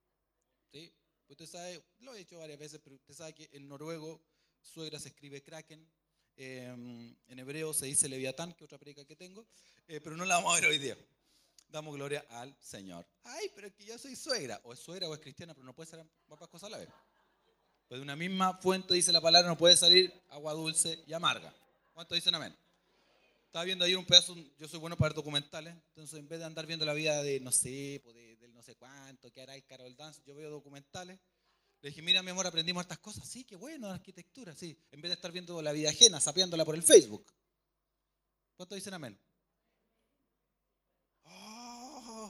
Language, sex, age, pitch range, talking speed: Spanish, male, 30-49, 145-190 Hz, 210 wpm